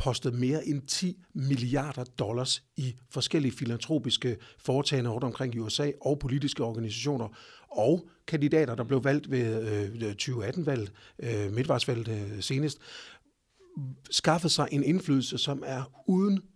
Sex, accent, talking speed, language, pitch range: male, native, 115 wpm, Danish, 115-145 Hz